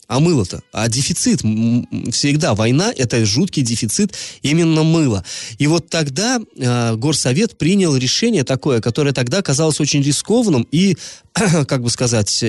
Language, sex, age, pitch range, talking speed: Russian, male, 20-39, 120-165 Hz, 135 wpm